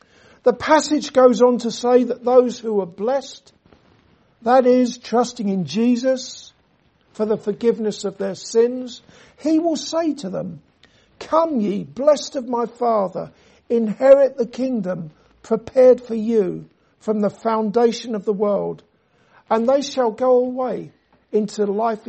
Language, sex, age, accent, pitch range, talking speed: English, male, 60-79, British, 210-255 Hz, 140 wpm